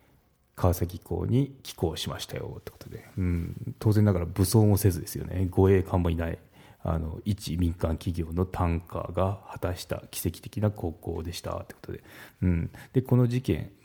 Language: Japanese